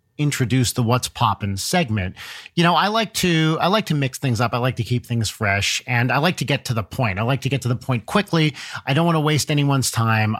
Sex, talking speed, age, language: male, 260 wpm, 40-59, English